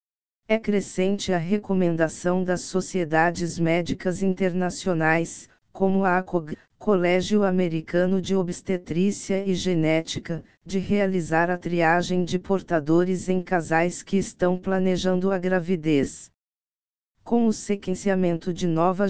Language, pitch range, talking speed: Portuguese, 170-190 Hz, 110 wpm